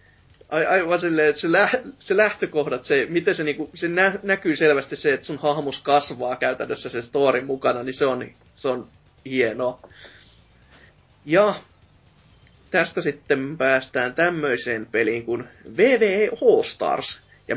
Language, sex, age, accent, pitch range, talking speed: Finnish, male, 30-49, native, 135-215 Hz, 125 wpm